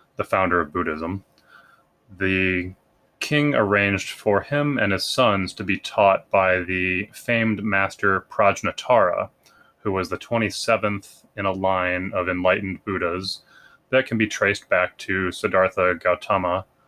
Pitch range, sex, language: 90-110 Hz, male, English